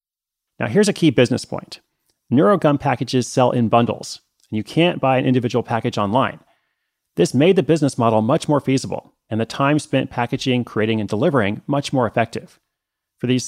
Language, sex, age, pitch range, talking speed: English, male, 30-49, 120-145 Hz, 180 wpm